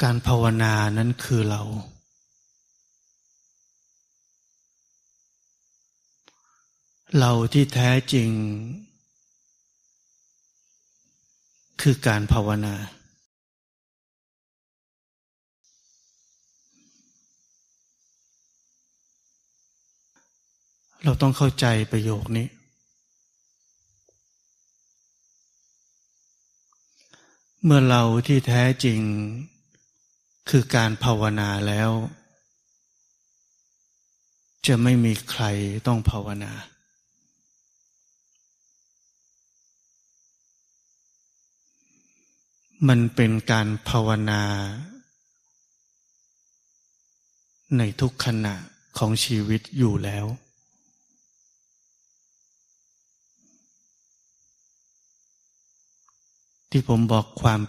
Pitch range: 110-135 Hz